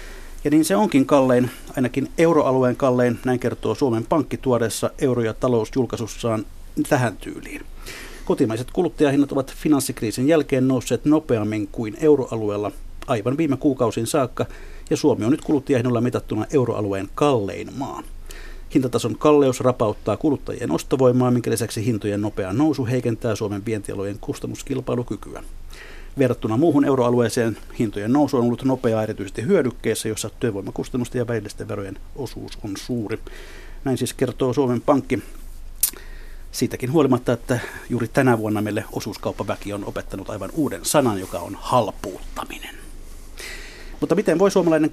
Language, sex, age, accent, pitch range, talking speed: Finnish, male, 50-69, native, 110-140 Hz, 130 wpm